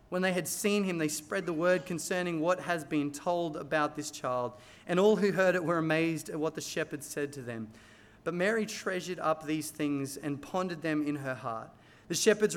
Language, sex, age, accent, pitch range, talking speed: English, male, 30-49, Australian, 160-195 Hz, 215 wpm